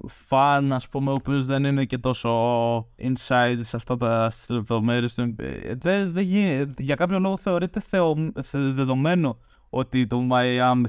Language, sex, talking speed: Greek, male, 130 wpm